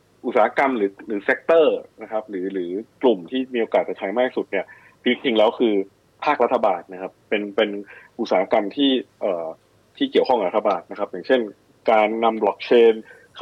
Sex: male